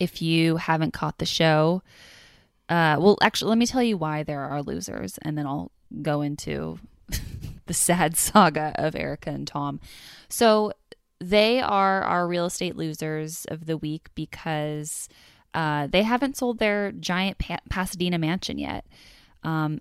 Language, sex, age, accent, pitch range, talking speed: English, female, 20-39, American, 155-200 Hz, 150 wpm